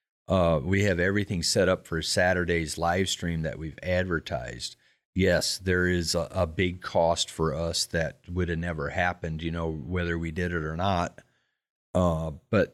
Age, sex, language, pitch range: 50-69, male, English, 85-100 Hz